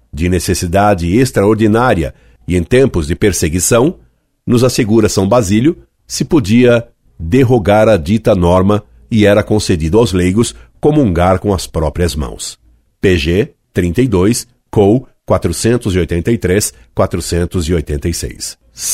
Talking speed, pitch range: 100 wpm, 90-120 Hz